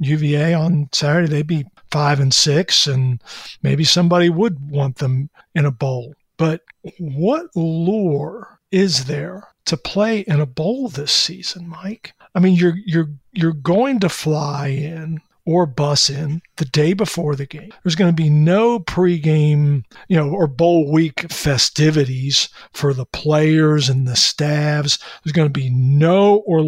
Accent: American